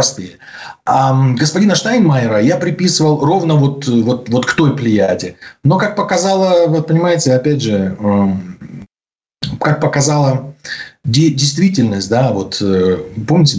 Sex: male